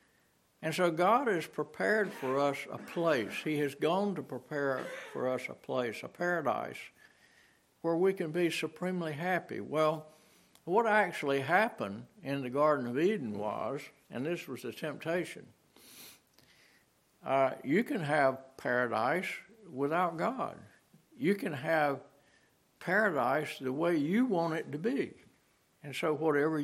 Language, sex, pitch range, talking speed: English, male, 135-175 Hz, 140 wpm